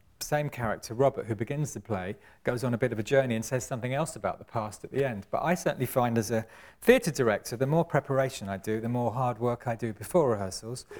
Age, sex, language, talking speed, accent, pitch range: 40-59, male, English, 245 wpm, British, 110-135 Hz